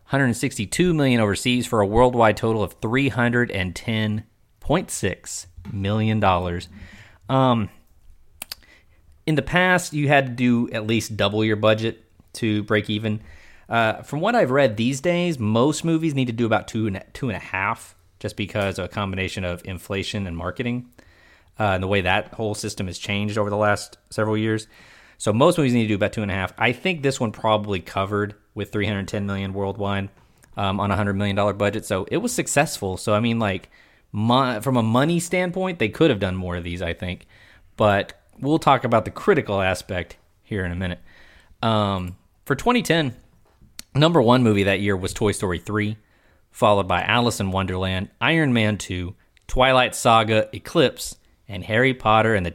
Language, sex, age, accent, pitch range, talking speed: English, male, 30-49, American, 95-120 Hz, 180 wpm